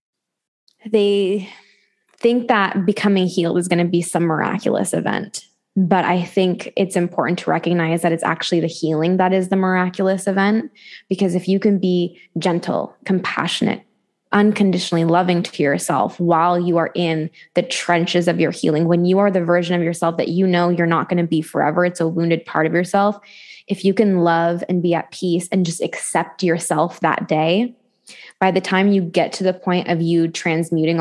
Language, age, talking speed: English, 10-29, 185 wpm